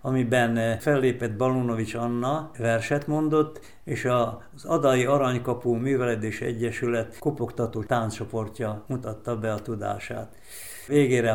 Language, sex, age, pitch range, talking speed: Hungarian, male, 60-79, 115-135 Hz, 100 wpm